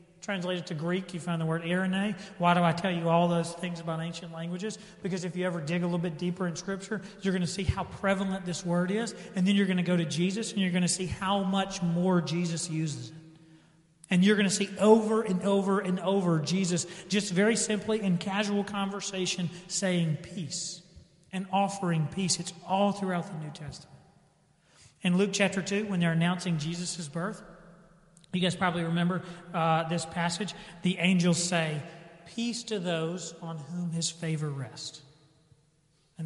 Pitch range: 160-185 Hz